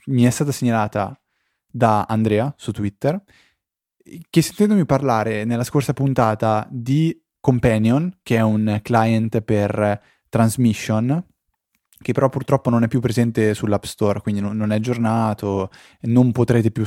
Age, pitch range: 20-39, 110-135 Hz